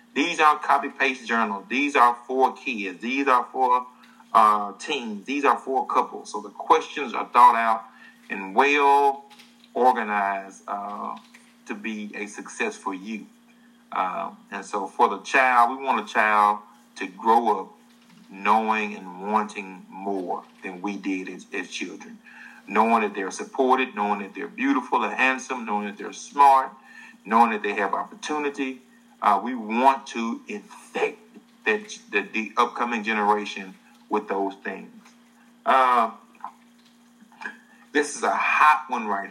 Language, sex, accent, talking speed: English, male, American, 140 wpm